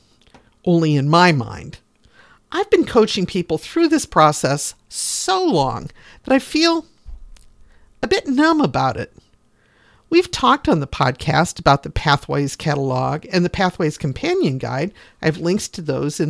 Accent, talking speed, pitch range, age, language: American, 150 wpm, 150-220 Hz, 50-69, English